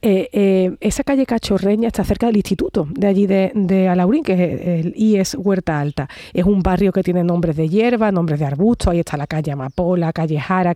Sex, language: female, Spanish